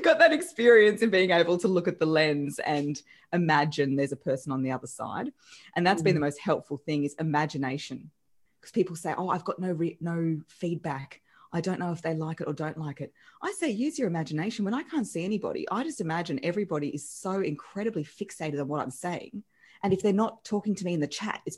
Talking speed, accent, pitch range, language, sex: 230 wpm, Australian, 150-210 Hz, English, female